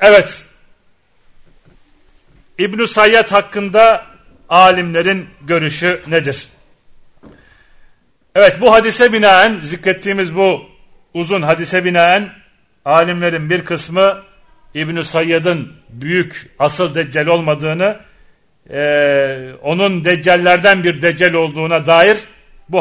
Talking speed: 85 wpm